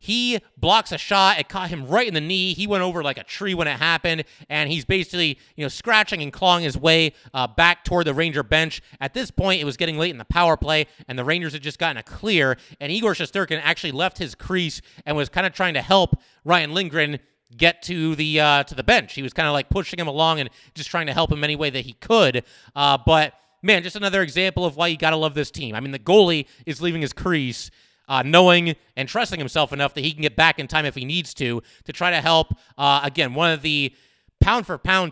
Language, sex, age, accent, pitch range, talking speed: English, male, 30-49, American, 145-180 Hz, 245 wpm